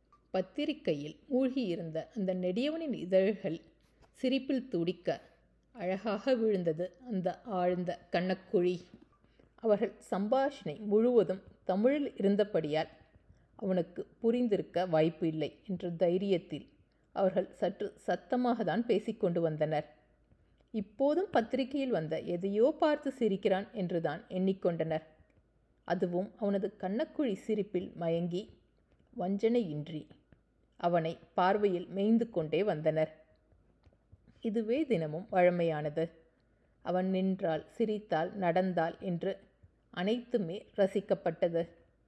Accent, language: native, Tamil